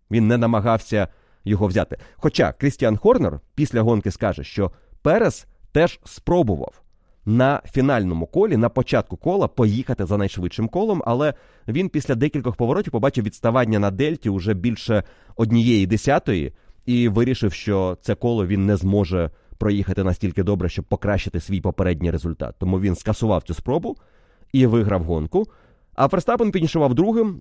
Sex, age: male, 30-49